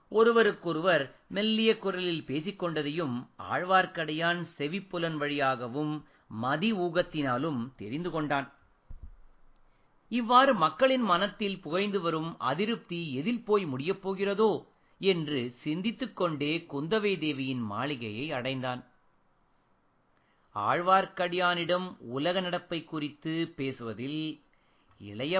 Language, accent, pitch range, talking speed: Tamil, native, 145-195 Hz, 80 wpm